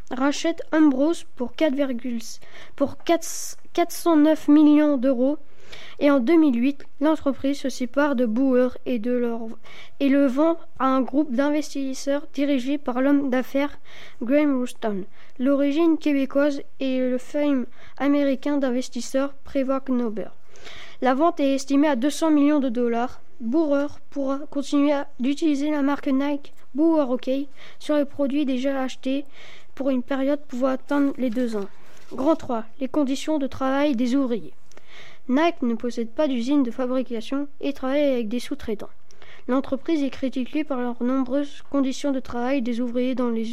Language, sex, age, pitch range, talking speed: French, female, 20-39, 255-290 Hz, 145 wpm